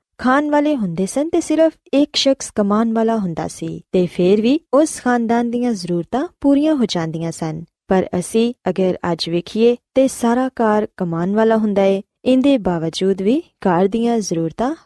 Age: 20-39